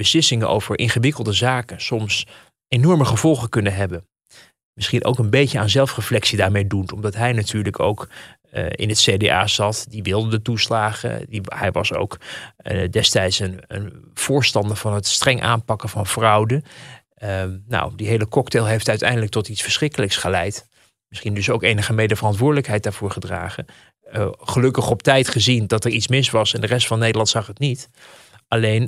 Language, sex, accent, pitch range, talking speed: Dutch, male, Dutch, 105-130 Hz, 170 wpm